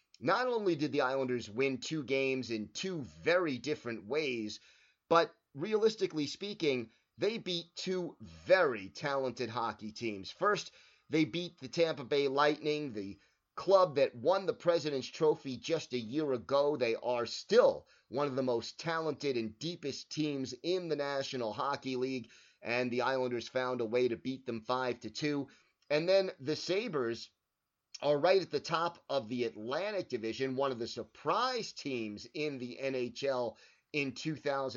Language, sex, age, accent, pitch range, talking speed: English, male, 30-49, American, 125-160 Hz, 155 wpm